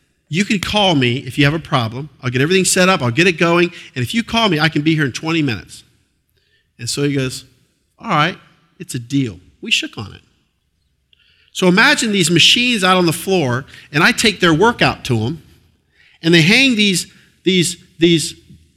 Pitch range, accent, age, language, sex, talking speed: 120-175 Hz, American, 50-69, English, male, 200 wpm